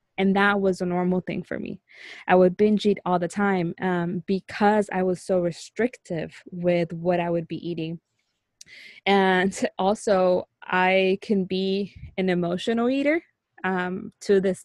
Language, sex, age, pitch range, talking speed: English, female, 20-39, 180-200 Hz, 155 wpm